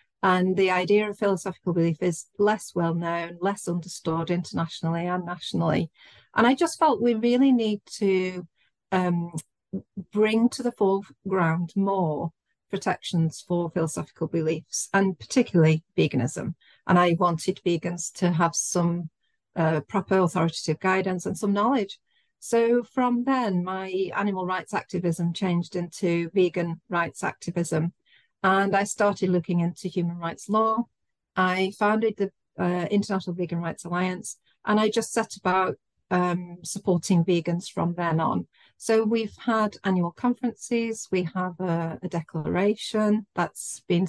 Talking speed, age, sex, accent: 135 wpm, 40-59, female, British